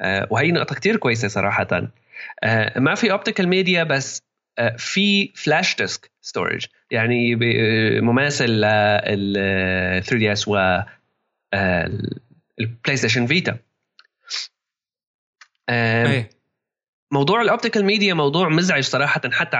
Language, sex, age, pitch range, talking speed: Arabic, male, 20-39, 120-175 Hz, 95 wpm